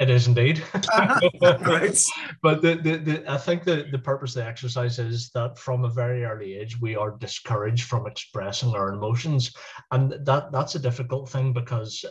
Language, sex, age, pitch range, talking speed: English, male, 30-49, 115-135 Hz, 180 wpm